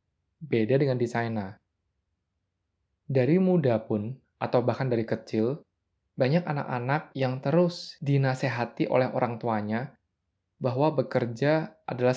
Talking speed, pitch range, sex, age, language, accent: 110 wpm, 105-135 Hz, male, 20-39, Indonesian, native